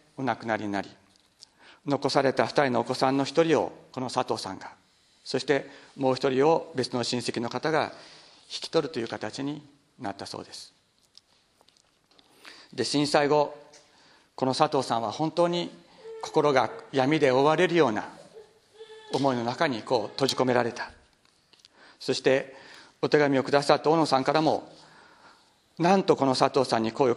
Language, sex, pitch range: Japanese, male, 125-160 Hz